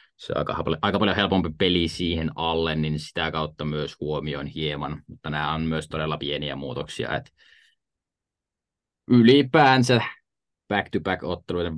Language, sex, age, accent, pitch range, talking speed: Finnish, male, 20-39, native, 75-85 Hz, 135 wpm